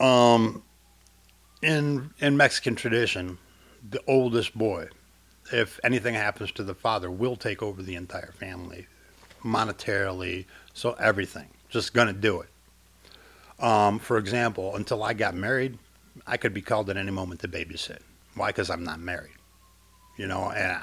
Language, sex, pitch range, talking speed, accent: English, male, 95-120 Hz, 145 wpm, American